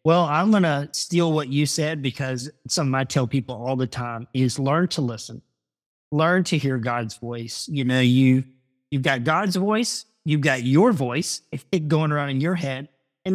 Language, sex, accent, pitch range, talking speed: English, male, American, 125-150 Hz, 195 wpm